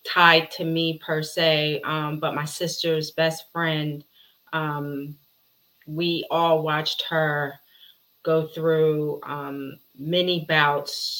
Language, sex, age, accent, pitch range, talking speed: English, female, 30-49, American, 145-160 Hz, 115 wpm